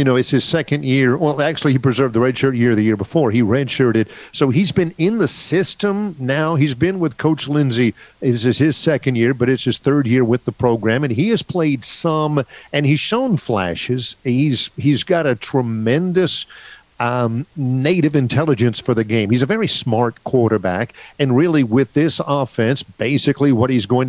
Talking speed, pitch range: 190 wpm, 115-140 Hz